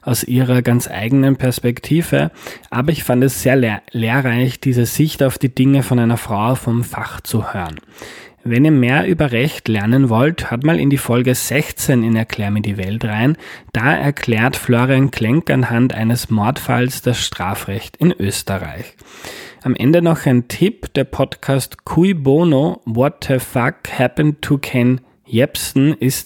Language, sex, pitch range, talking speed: German, male, 115-140 Hz, 160 wpm